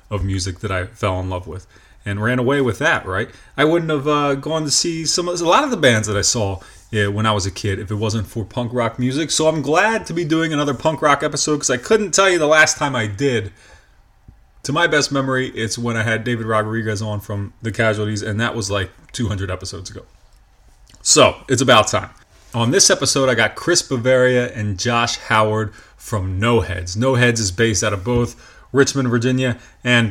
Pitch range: 105-145 Hz